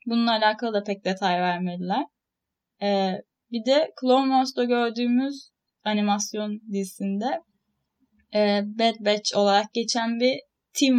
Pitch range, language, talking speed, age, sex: 190-235 Hz, Turkish, 115 wpm, 10-29, female